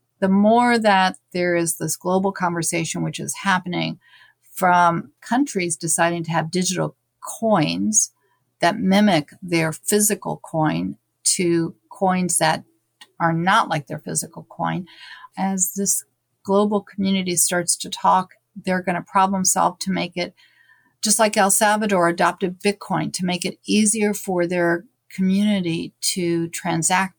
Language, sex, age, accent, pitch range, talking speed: English, female, 50-69, American, 170-200 Hz, 135 wpm